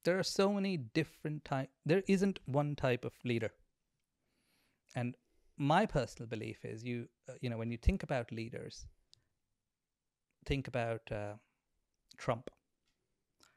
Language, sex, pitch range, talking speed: English, male, 115-140 Hz, 130 wpm